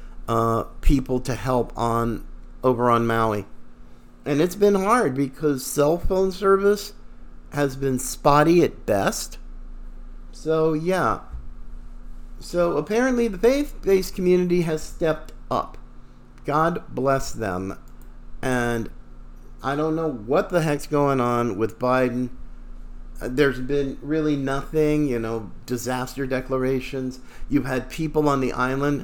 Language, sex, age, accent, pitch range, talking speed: English, male, 50-69, American, 115-155 Hz, 120 wpm